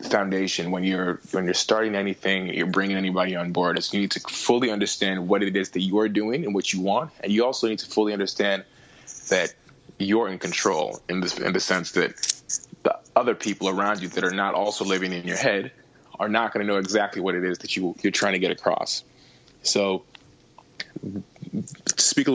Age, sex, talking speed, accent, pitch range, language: 20-39, male, 210 wpm, American, 95-110 Hz, English